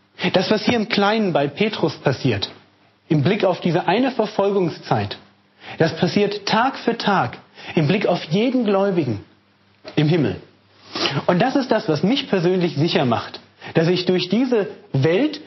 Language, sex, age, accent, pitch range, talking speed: German, male, 40-59, German, 145-200 Hz, 155 wpm